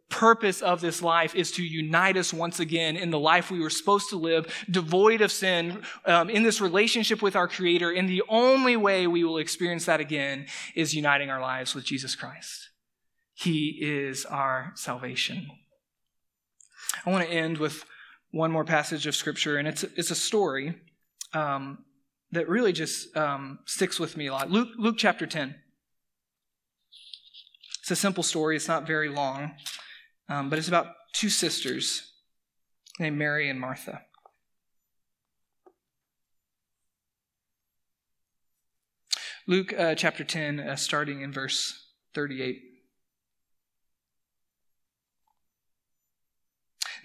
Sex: male